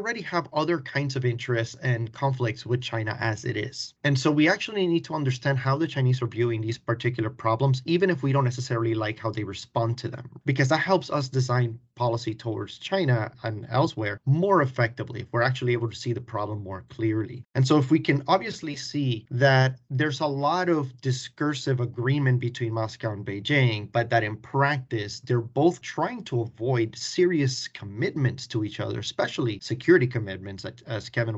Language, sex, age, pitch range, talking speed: English, male, 30-49, 115-150 Hz, 185 wpm